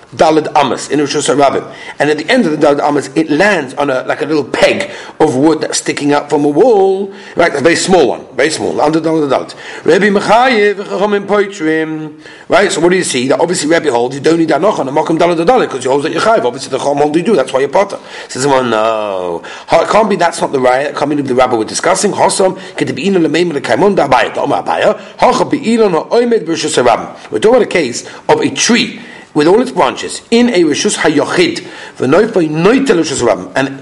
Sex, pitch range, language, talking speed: male, 145-205 Hz, English, 200 wpm